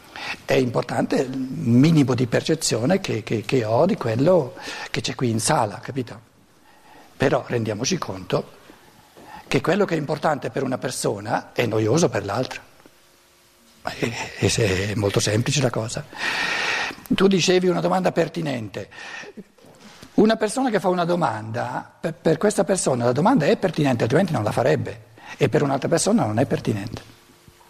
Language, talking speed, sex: Italian, 145 wpm, male